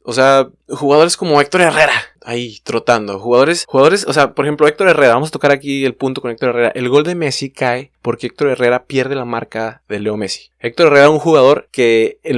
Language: Spanish